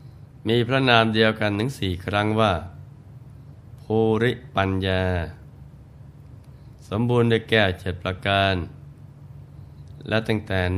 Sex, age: male, 20-39